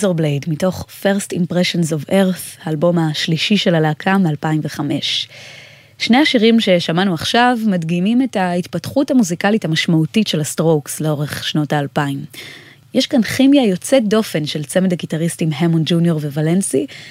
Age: 20-39